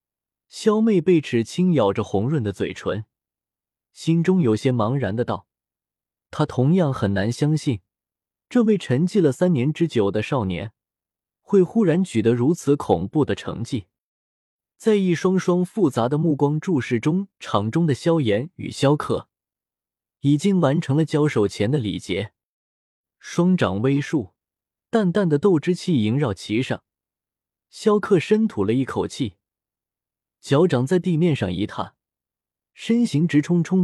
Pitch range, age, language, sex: 110-175 Hz, 20-39, Chinese, male